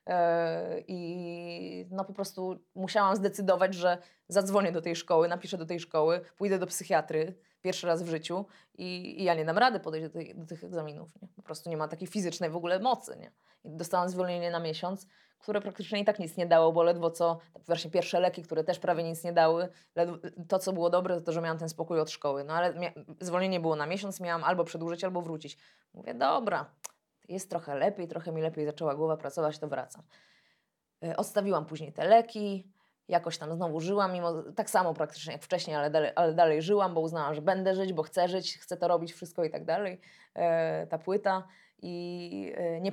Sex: female